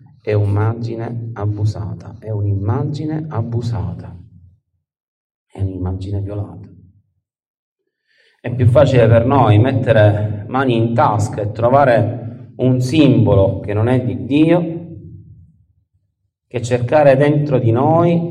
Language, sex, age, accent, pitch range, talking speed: Italian, male, 40-59, native, 110-150 Hz, 105 wpm